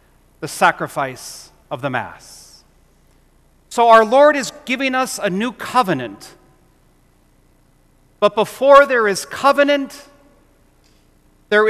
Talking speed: 105 wpm